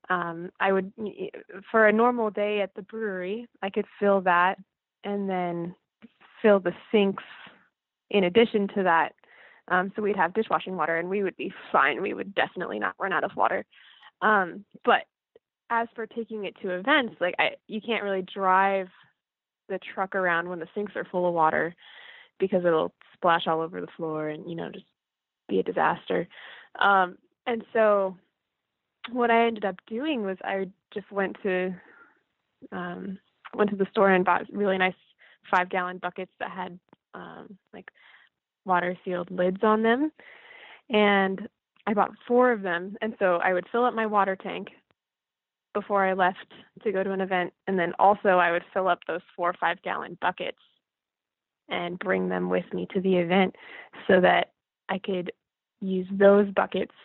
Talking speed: 175 wpm